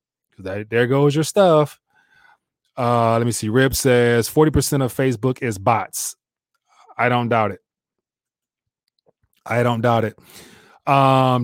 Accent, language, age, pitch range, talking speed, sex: American, English, 20-39, 115-140 Hz, 125 wpm, male